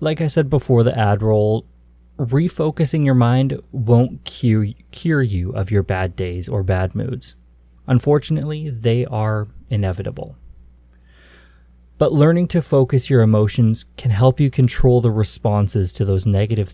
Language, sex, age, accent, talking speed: English, male, 20-39, American, 145 wpm